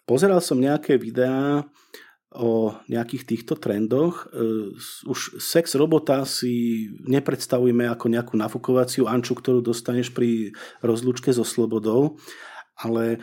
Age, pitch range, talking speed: 40-59, 115-140 Hz, 110 wpm